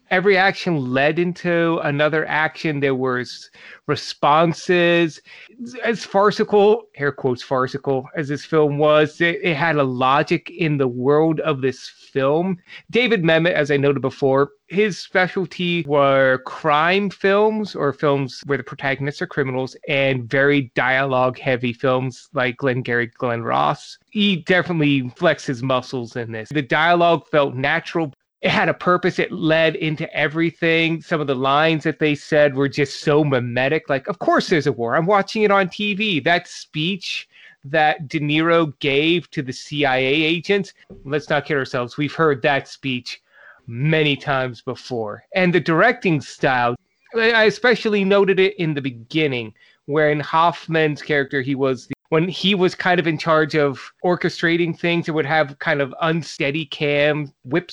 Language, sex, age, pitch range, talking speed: English, male, 30-49, 140-170 Hz, 160 wpm